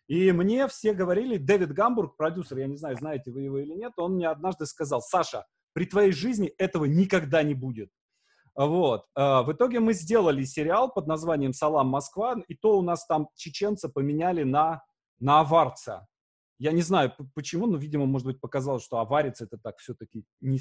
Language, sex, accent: Russian, male, native